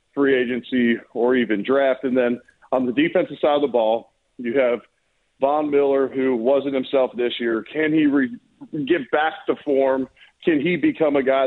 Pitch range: 120-150 Hz